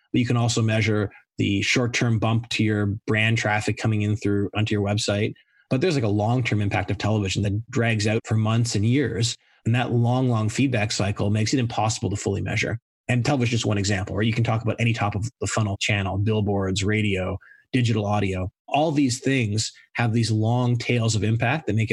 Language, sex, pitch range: English, male, 105-125 Hz